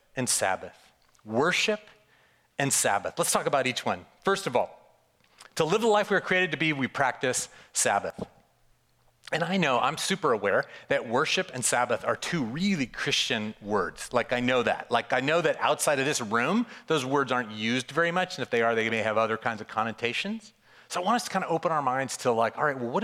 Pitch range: 125-180 Hz